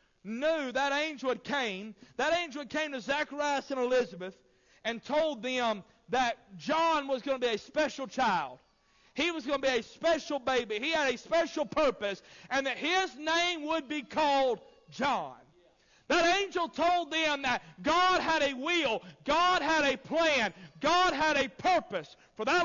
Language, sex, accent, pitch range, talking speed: English, male, American, 230-310 Hz, 175 wpm